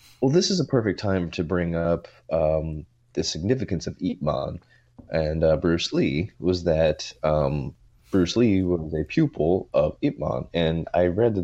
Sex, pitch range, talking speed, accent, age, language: male, 80-105 Hz, 180 wpm, American, 30-49, English